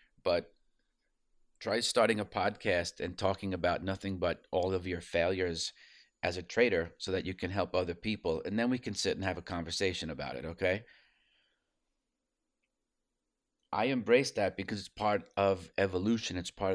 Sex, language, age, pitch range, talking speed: male, English, 30-49, 85-100 Hz, 165 wpm